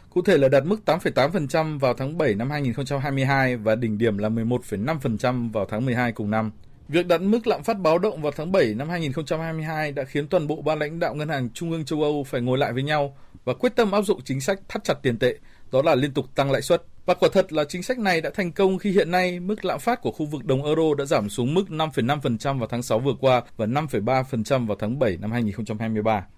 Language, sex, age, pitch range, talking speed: Vietnamese, male, 20-39, 120-160 Hz, 245 wpm